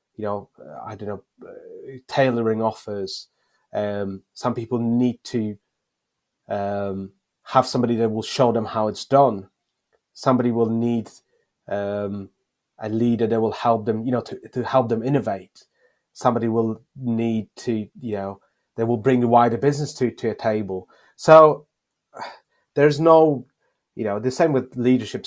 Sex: male